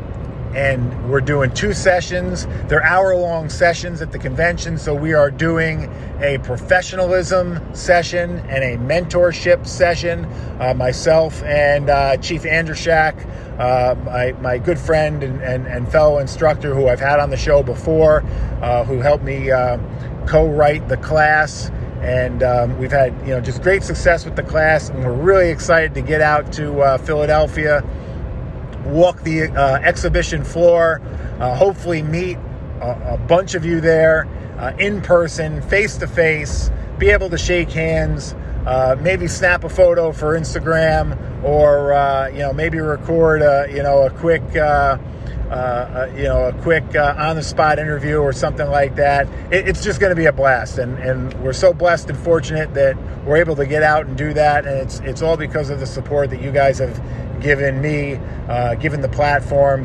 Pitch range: 130-160 Hz